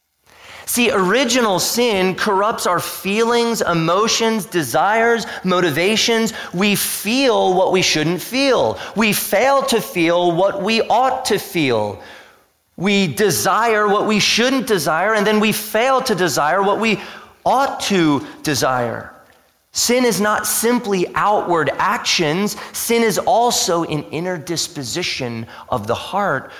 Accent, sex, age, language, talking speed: American, male, 30-49, English, 125 wpm